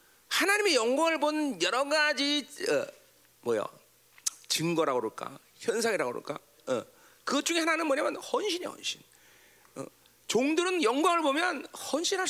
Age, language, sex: 40-59, Korean, male